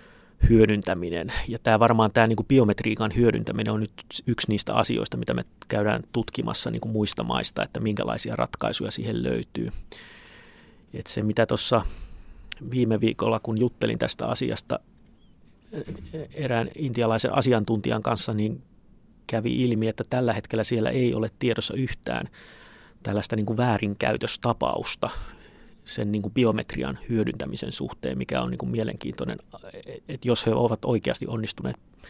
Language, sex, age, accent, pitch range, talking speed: Finnish, male, 30-49, native, 105-120 Hz, 125 wpm